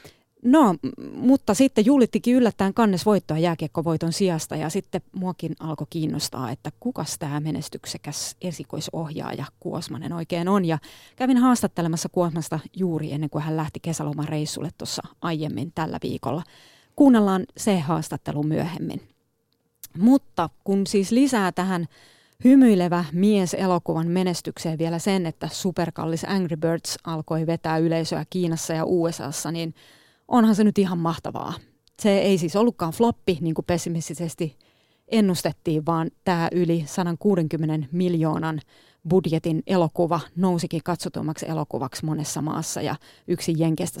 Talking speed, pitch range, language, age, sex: 120 wpm, 160-195 Hz, Finnish, 30-49, female